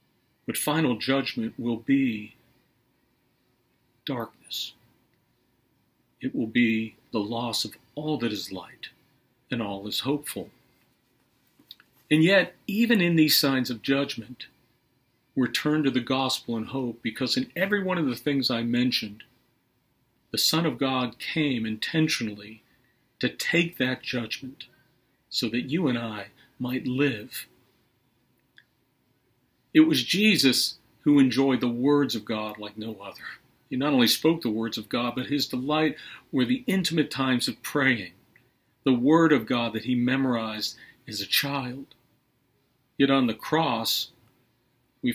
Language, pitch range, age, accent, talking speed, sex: English, 115-140 Hz, 50-69, American, 140 wpm, male